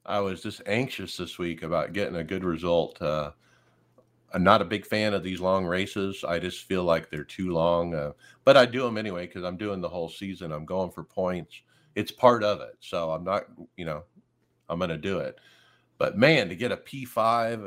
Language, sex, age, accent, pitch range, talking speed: English, male, 50-69, American, 85-110 Hz, 220 wpm